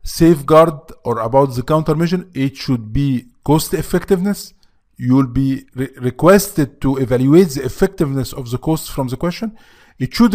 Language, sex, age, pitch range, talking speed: English, male, 40-59, 130-175 Hz, 155 wpm